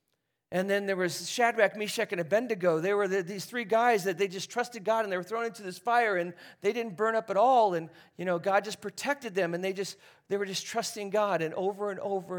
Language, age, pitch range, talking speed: English, 40-59, 145-200 Hz, 250 wpm